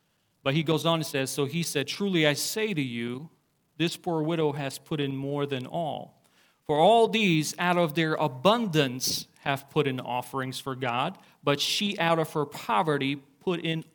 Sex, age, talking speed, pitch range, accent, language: male, 40-59, 190 wpm, 140-165 Hz, American, English